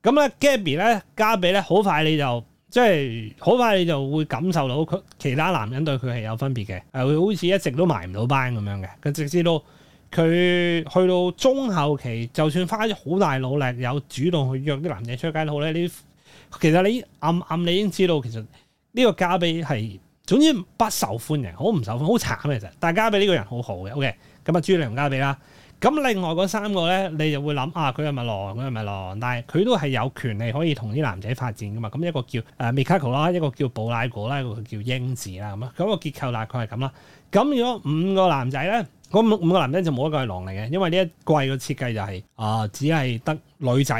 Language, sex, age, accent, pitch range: Chinese, male, 30-49, native, 125-175 Hz